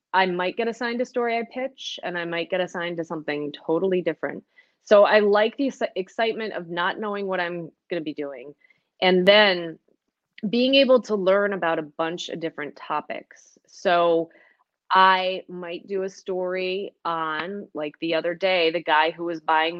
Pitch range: 170-215 Hz